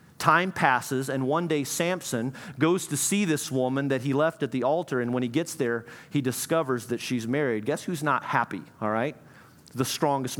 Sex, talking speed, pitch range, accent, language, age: male, 200 wpm, 125-165 Hz, American, English, 40-59